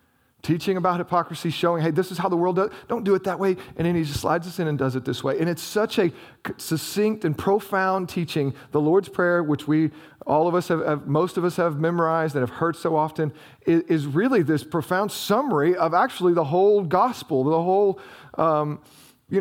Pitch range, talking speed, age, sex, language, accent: 155-195 Hz, 225 wpm, 40-59, male, English, American